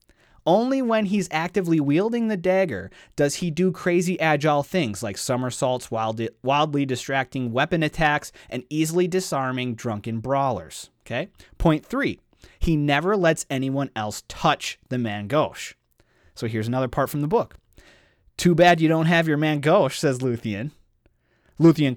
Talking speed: 150 wpm